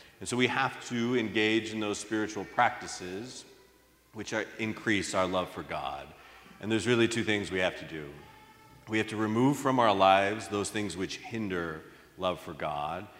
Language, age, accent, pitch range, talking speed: English, 40-59, American, 85-105 Hz, 175 wpm